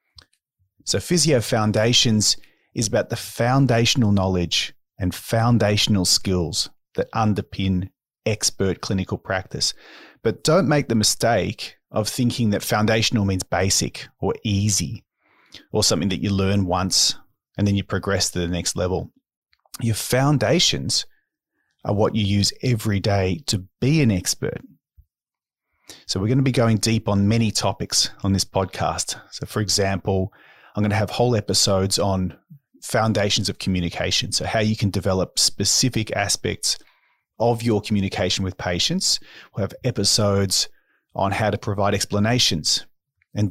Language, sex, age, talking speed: English, male, 30-49, 140 wpm